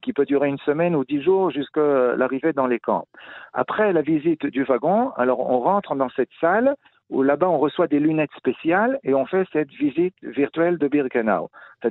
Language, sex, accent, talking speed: French, male, French, 200 wpm